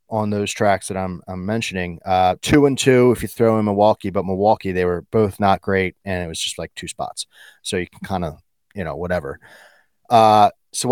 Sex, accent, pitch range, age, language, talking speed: male, American, 95-125 Hz, 30-49, English, 220 wpm